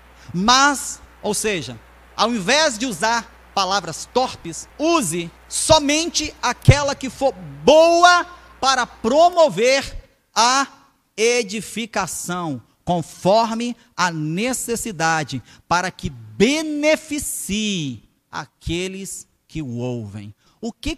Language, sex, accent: Portuguese, male, Brazilian